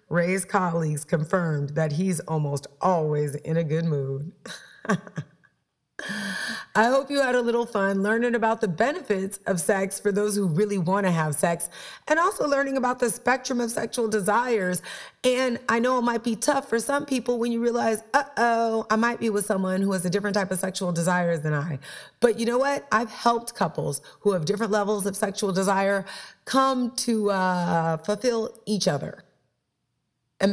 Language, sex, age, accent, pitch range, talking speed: English, female, 30-49, American, 180-235 Hz, 180 wpm